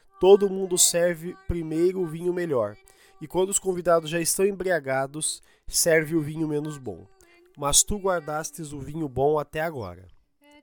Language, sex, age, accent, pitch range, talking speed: Portuguese, male, 20-39, Brazilian, 145-200 Hz, 150 wpm